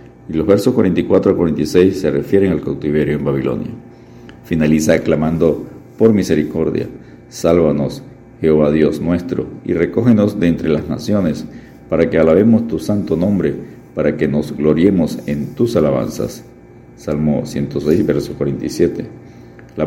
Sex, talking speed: male, 135 wpm